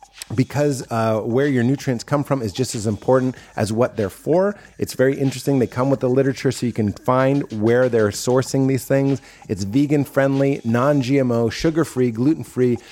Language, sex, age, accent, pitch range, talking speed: English, male, 30-49, American, 120-145 Hz, 170 wpm